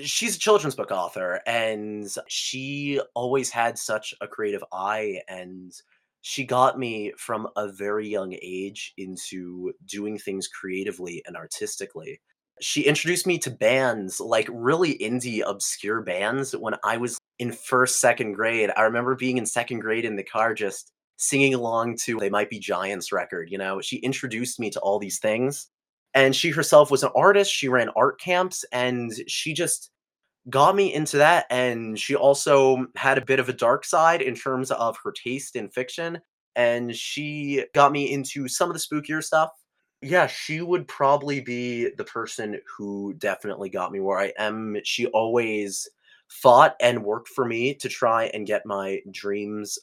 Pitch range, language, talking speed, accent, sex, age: 110-140 Hz, English, 170 wpm, American, male, 20-39